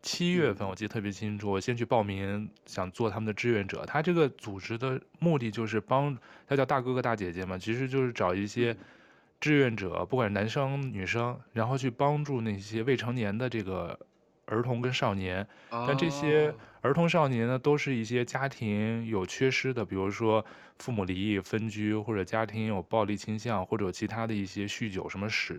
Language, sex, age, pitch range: Chinese, male, 20-39, 105-125 Hz